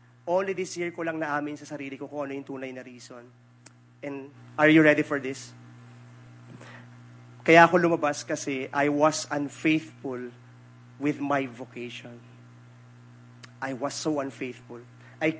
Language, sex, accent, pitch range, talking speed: English, male, Filipino, 120-155 Hz, 140 wpm